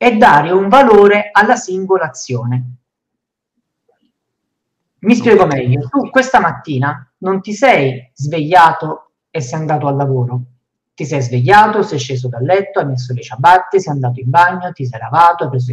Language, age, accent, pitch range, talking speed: Italian, 50-69, native, 135-195 Hz, 160 wpm